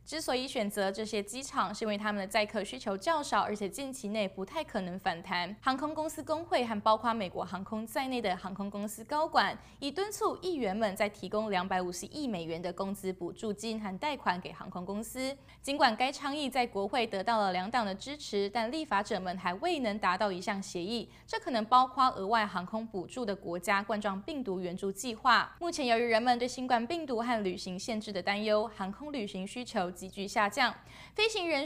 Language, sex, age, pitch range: Chinese, female, 20-39, 200-275 Hz